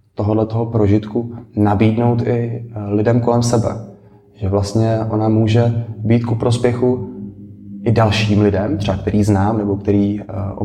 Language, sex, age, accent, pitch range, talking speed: Czech, male, 20-39, native, 100-115 Hz, 130 wpm